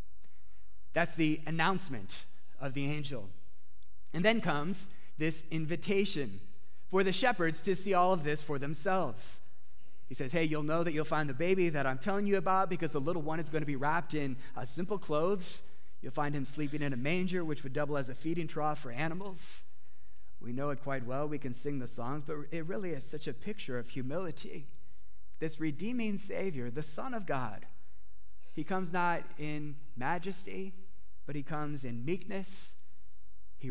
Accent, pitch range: American, 105-160 Hz